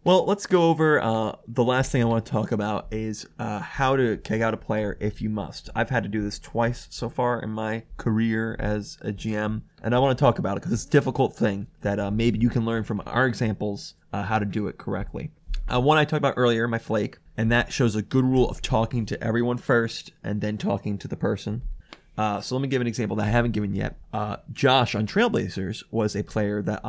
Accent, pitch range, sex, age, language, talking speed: American, 105-125 Hz, male, 20-39, English, 245 wpm